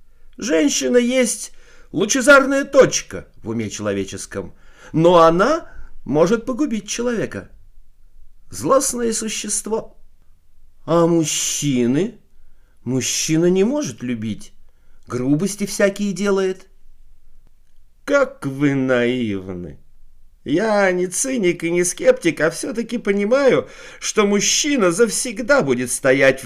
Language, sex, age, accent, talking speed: Russian, male, 50-69, native, 90 wpm